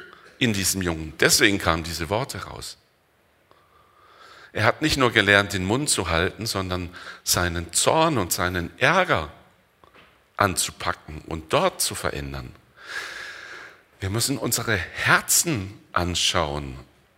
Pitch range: 85-110 Hz